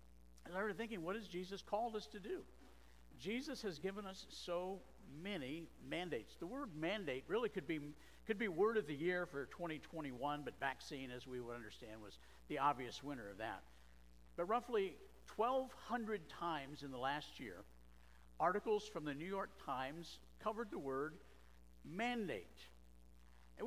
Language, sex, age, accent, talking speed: English, male, 60-79, American, 160 wpm